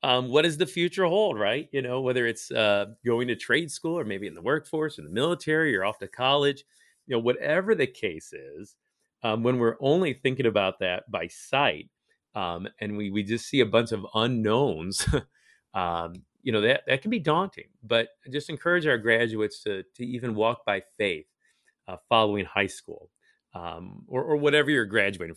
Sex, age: male, 40-59